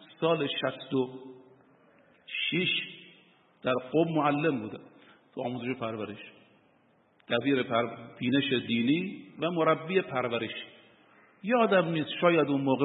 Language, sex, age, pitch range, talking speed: Persian, male, 50-69, 125-165 Hz, 110 wpm